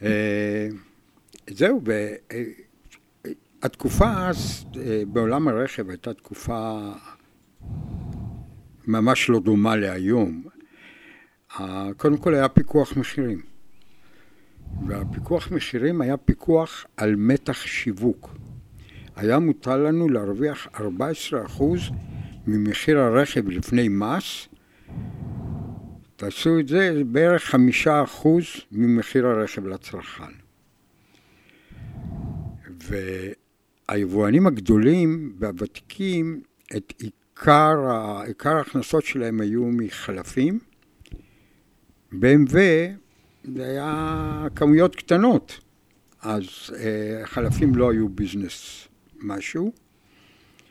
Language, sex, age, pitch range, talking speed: Hebrew, male, 60-79, 105-150 Hz, 75 wpm